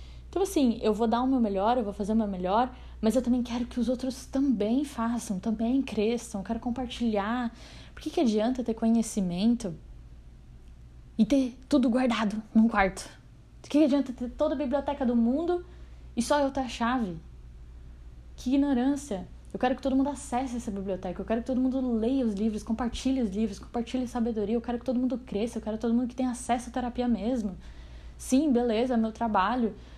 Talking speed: 200 wpm